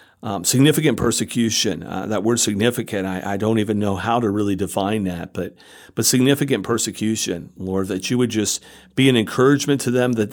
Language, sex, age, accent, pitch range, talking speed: English, male, 50-69, American, 105-130 Hz, 185 wpm